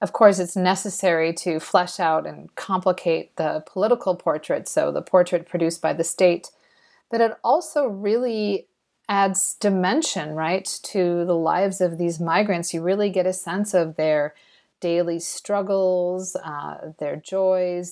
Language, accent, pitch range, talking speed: English, American, 175-215 Hz, 145 wpm